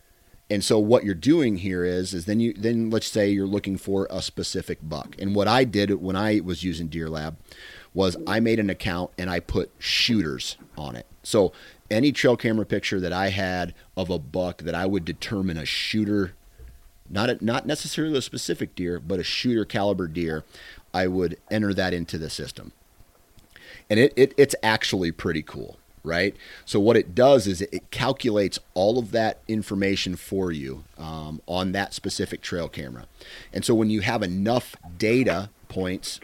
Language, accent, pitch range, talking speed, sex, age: English, American, 85-105 Hz, 185 wpm, male, 30-49